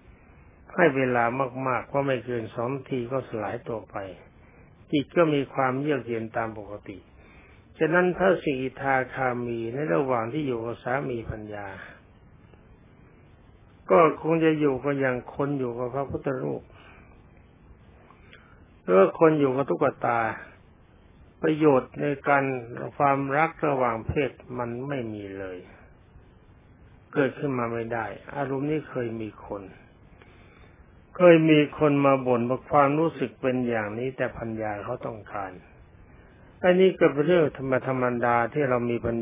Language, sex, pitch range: Thai, male, 110-140 Hz